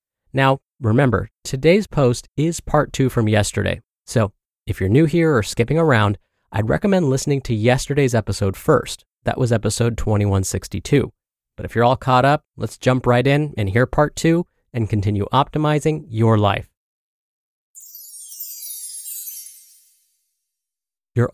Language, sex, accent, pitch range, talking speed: English, male, American, 105-150 Hz, 135 wpm